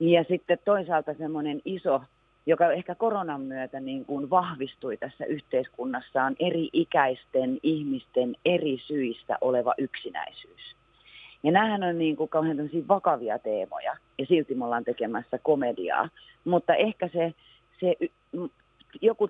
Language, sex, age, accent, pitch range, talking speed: Finnish, female, 40-59, native, 130-165 Hz, 130 wpm